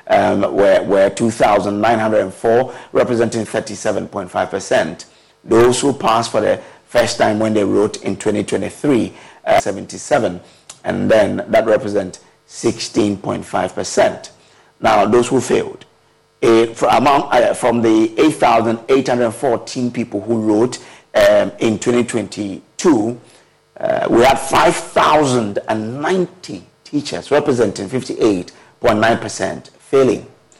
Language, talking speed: English, 90 wpm